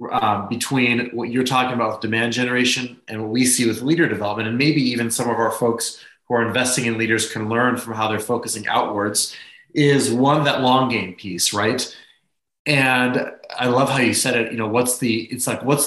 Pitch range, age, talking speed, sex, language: 110-130 Hz, 30-49, 210 wpm, male, English